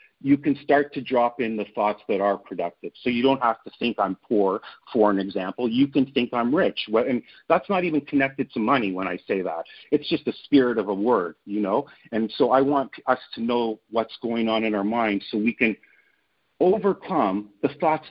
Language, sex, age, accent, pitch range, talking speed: English, male, 50-69, American, 110-145 Hz, 220 wpm